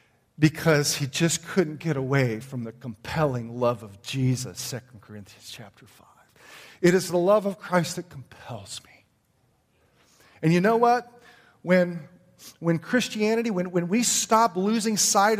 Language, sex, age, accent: English, male, 40-59, American